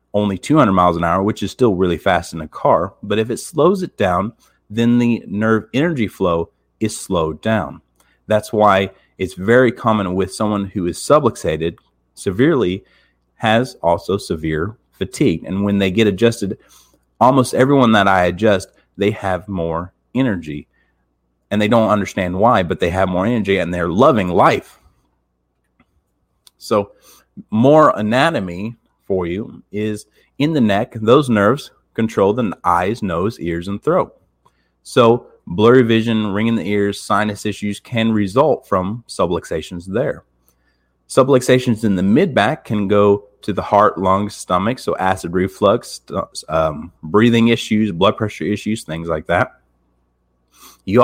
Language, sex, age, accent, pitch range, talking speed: English, male, 30-49, American, 85-110 Hz, 145 wpm